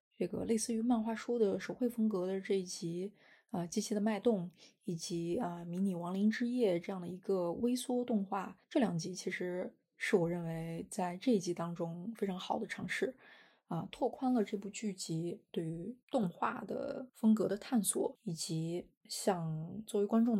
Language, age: Chinese, 20-39